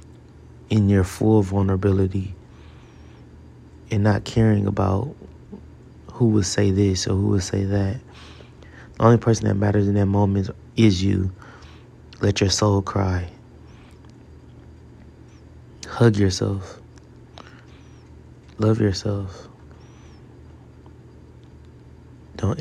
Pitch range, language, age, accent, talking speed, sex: 95-105 Hz, English, 20-39, American, 95 wpm, male